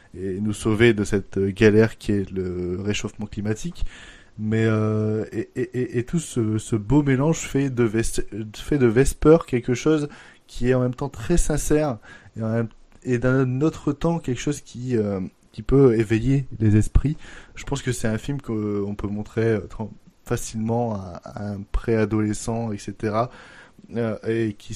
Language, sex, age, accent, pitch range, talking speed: French, male, 20-39, French, 105-120 Hz, 170 wpm